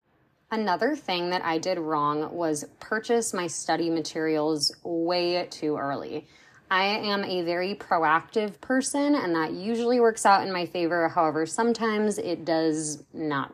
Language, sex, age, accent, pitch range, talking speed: English, female, 20-39, American, 155-195 Hz, 145 wpm